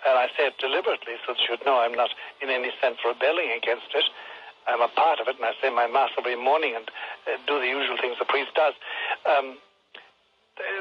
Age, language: 60-79, English